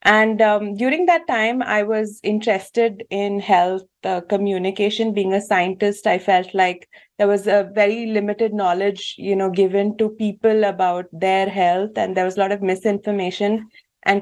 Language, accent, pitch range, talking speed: English, Indian, 195-225 Hz, 170 wpm